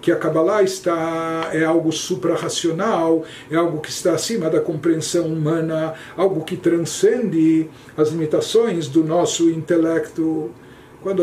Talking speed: 130 wpm